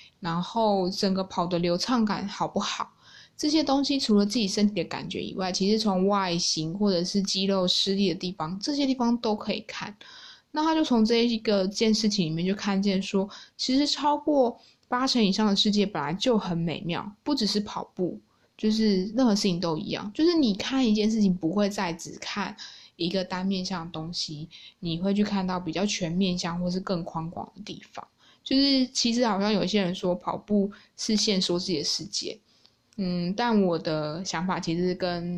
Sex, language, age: female, Chinese, 20-39